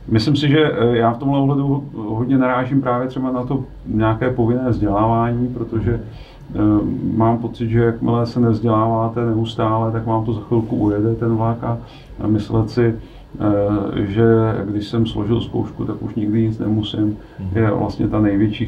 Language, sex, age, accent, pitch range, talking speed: Czech, male, 40-59, native, 105-125 Hz, 155 wpm